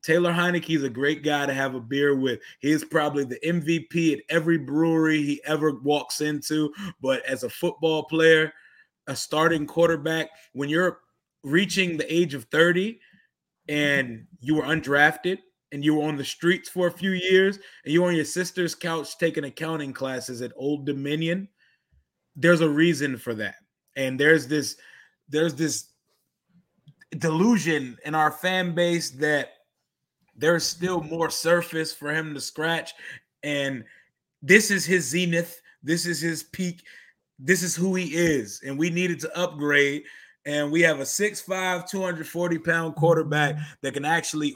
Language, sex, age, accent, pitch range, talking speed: English, male, 20-39, American, 145-170 Hz, 160 wpm